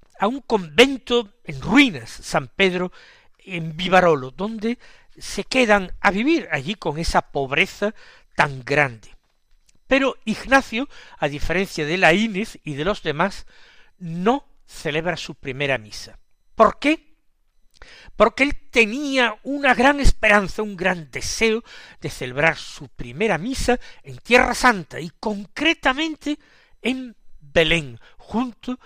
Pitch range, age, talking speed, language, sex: 150-240 Hz, 60-79, 125 wpm, Spanish, male